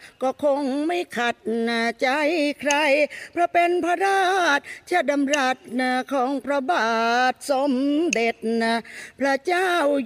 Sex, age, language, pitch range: female, 40-59, Thai, 255-335 Hz